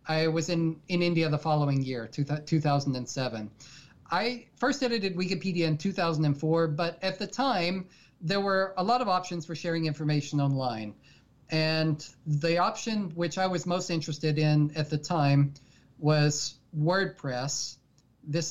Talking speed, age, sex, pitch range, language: 145 wpm, 30-49, male, 145-180 Hz, English